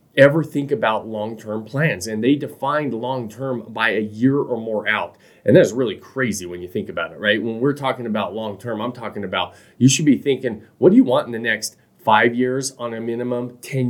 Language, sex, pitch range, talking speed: English, male, 110-140 Hz, 220 wpm